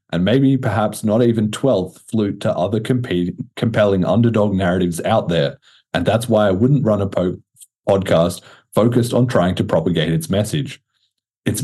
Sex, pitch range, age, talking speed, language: male, 90-125 Hz, 40-59, 155 wpm, English